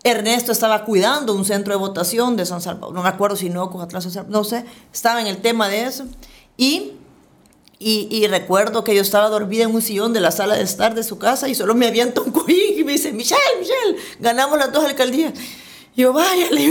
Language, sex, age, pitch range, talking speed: Spanish, female, 40-59, 205-270 Hz, 220 wpm